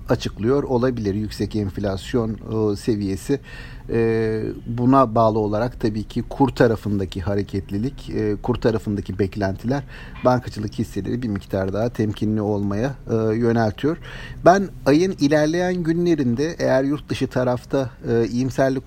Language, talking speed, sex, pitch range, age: Turkish, 105 wpm, male, 105-135 Hz, 50-69